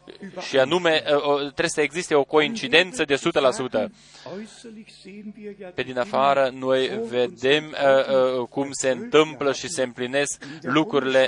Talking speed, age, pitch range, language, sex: 110 wpm, 20-39, 130-165 Hz, Romanian, male